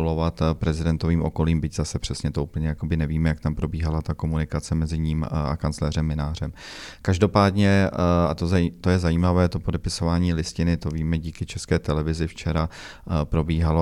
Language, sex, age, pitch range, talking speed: Czech, male, 30-49, 80-85 Hz, 145 wpm